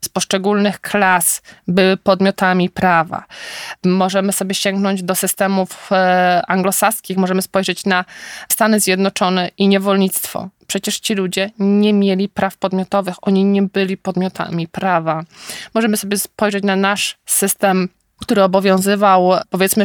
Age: 20-39